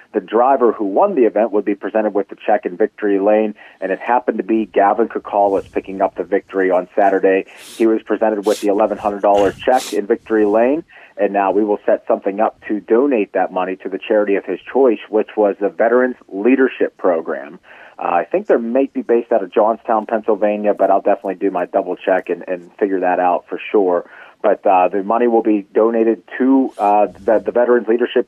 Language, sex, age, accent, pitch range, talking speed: English, male, 40-59, American, 95-110 Hz, 210 wpm